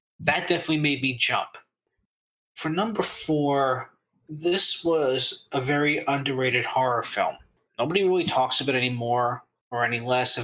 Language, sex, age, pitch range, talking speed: English, male, 20-39, 125-145 Hz, 140 wpm